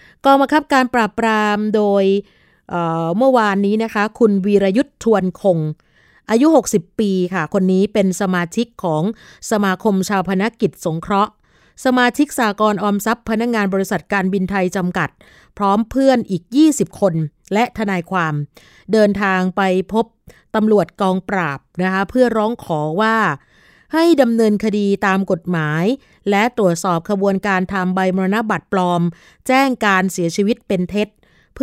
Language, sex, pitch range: Thai, female, 185-225 Hz